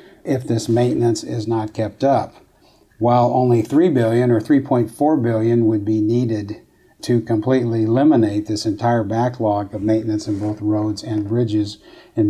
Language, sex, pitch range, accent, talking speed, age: English, male, 110-125 Hz, American, 150 wpm, 50-69